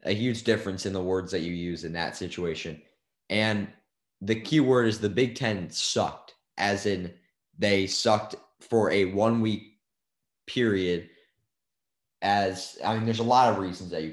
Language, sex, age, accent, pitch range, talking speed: English, male, 20-39, American, 80-100 Hz, 170 wpm